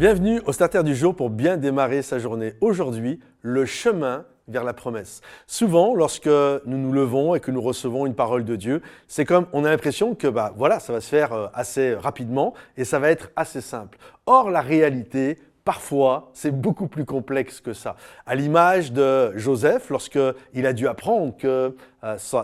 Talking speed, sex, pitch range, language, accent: 185 wpm, male, 130-175 Hz, French, French